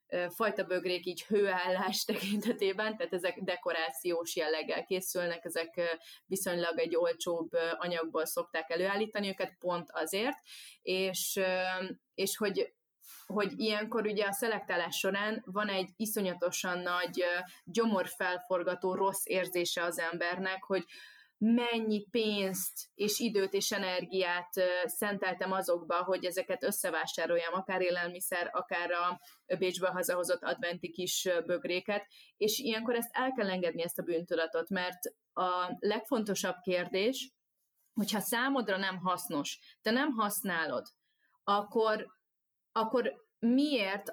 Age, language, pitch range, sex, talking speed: 20-39, Hungarian, 180-215 Hz, female, 110 wpm